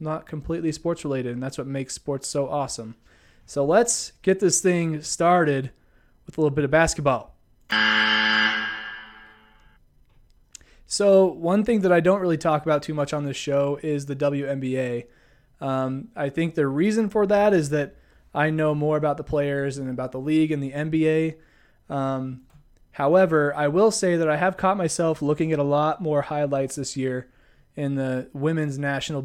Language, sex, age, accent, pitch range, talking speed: English, male, 20-39, American, 135-165 Hz, 170 wpm